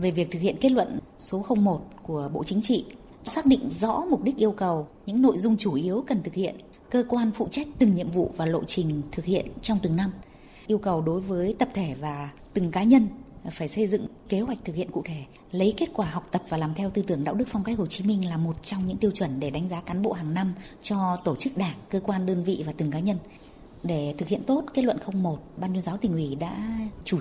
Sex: female